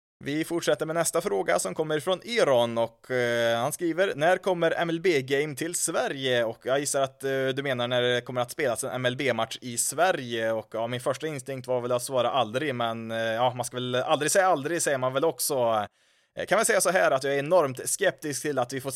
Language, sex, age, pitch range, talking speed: Swedish, male, 20-39, 120-140 Hz, 230 wpm